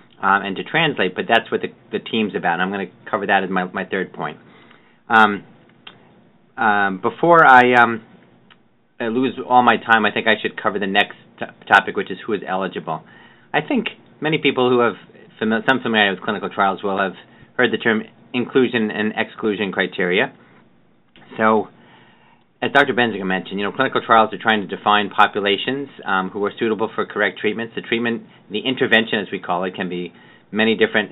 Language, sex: English, male